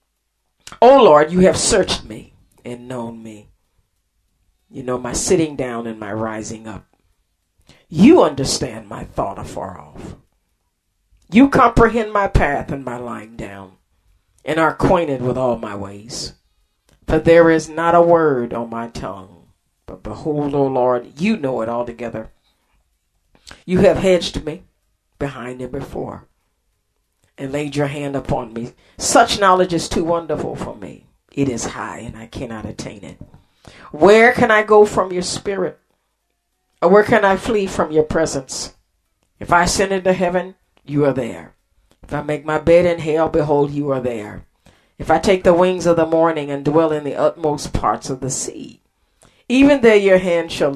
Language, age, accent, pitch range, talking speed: English, 40-59, American, 110-170 Hz, 170 wpm